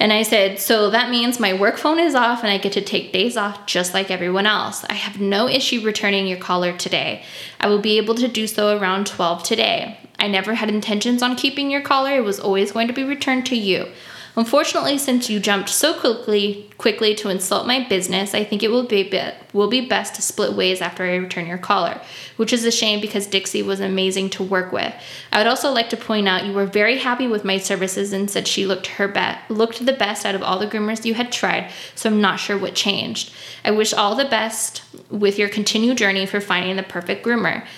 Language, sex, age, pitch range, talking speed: English, female, 10-29, 195-230 Hz, 235 wpm